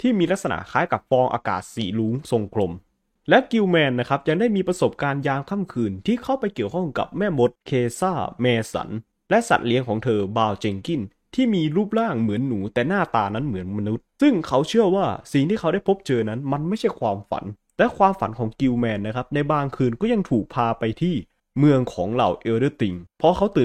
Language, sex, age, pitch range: Thai, male, 20-39, 115-175 Hz